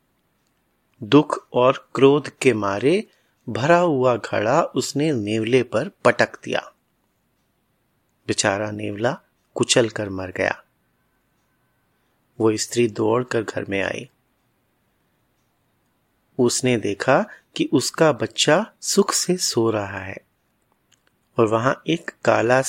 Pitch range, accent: 115-150 Hz, native